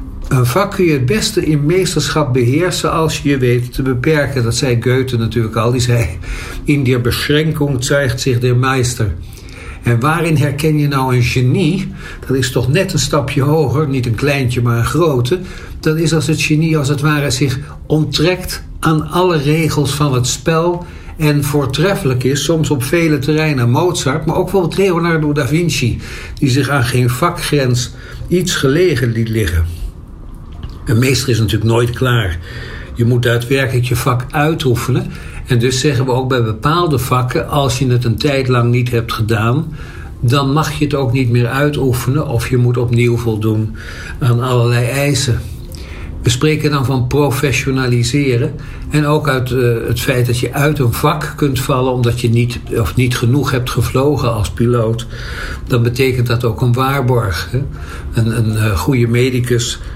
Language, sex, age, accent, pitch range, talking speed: Dutch, male, 60-79, Dutch, 120-150 Hz, 170 wpm